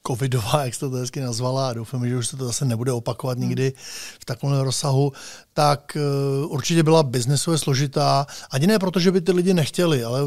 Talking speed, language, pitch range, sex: 195 wpm, Slovak, 140-165 Hz, male